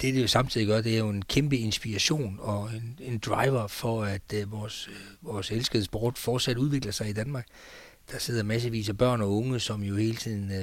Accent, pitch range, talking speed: native, 105-120 Hz, 205 wpm